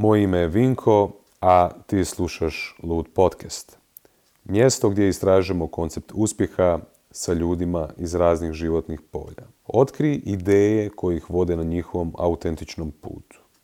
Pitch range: 85-105 Hz